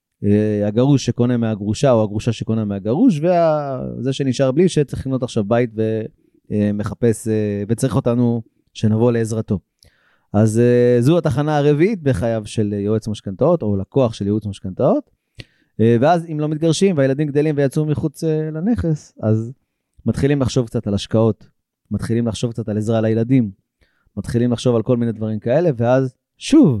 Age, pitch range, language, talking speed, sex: 30-49, 110-135 Hz, Hebrew, 155 wpm, male